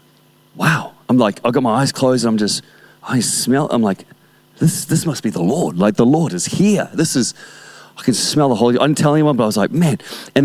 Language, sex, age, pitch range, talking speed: English, male, 30-49, 135-170 Hz, 245 wpm